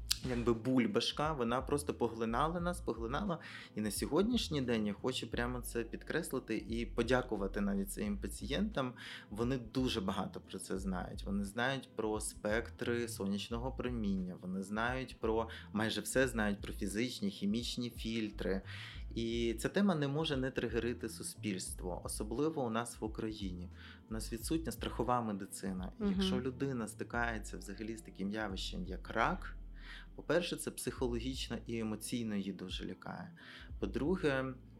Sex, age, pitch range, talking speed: male, 20-39, 100-130 Hz, 140 wpm